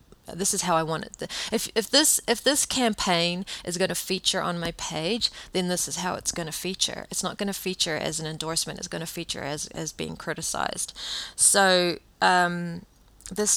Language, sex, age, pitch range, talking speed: English, female, 30-49, 170-215 Hz, 205 wpm